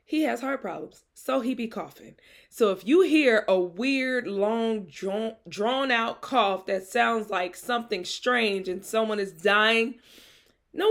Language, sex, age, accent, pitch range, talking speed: English, female, 20-39, American, 200-260 Hz, 160 wpm